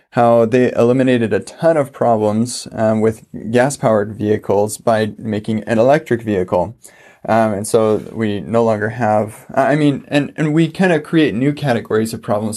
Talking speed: 170 wpm